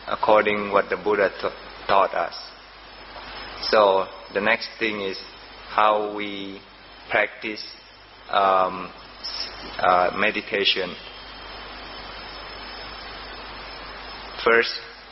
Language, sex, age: Thai, male, 20-39